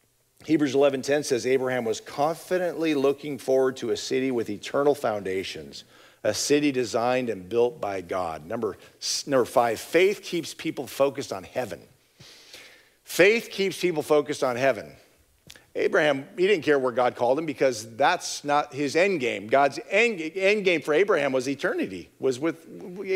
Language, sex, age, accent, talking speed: English, male, 50-69, American, 155 wpm